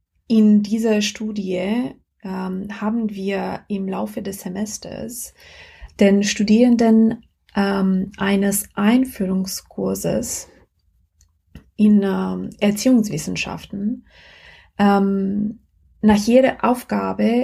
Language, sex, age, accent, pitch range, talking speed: German, female, 20-39, German, 190-220 Hz, 75 wpm